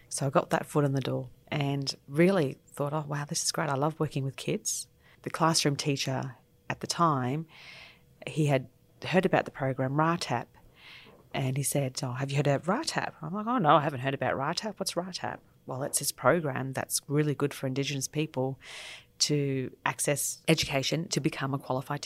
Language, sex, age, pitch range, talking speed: English, female, 30-49, 135-160 Hz, 195 wpm